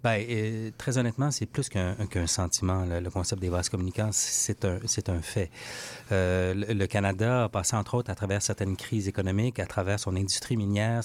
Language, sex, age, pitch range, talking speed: French, male, 30-49, 95-115 Hz, 200 wpm